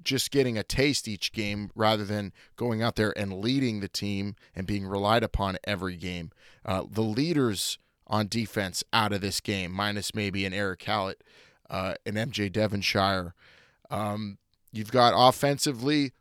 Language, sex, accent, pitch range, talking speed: English, male, American, 100-130 Hz, 160 wpm